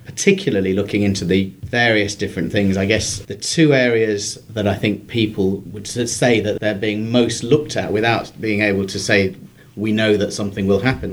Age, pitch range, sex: 40-59, 100-120 Hz, male